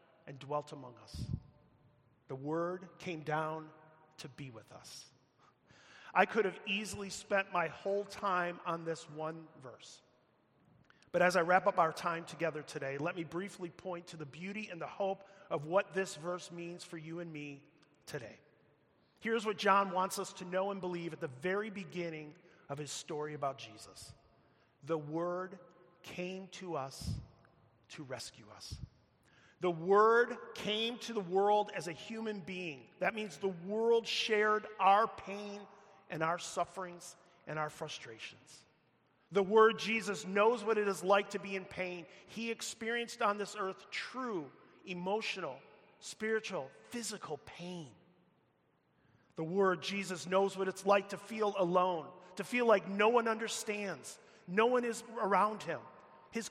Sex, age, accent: male, 30-49, American